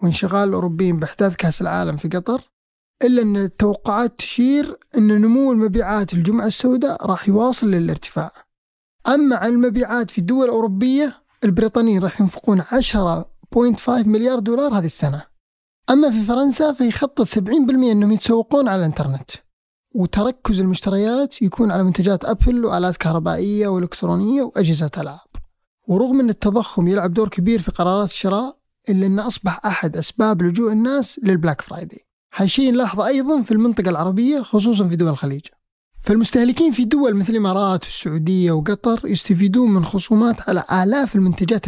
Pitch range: 185-240 Hz